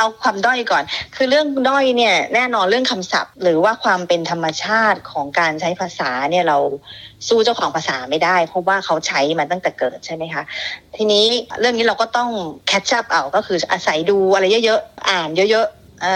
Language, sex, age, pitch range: Thai, female, 30-49, 165-220 Hz